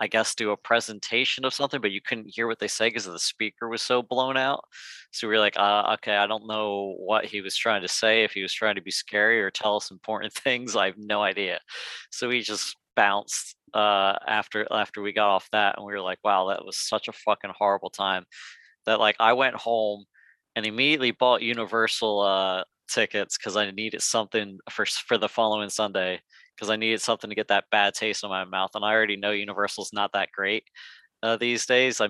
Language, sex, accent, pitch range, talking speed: English, male, American, 100-115 Hz, 220 wpm